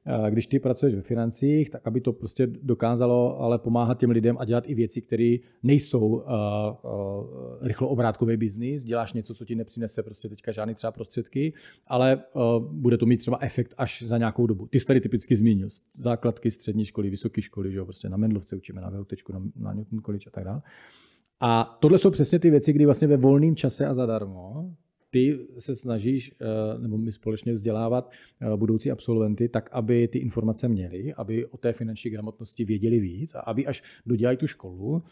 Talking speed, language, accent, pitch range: 185 wpm, Czech, native, 110-140 Hz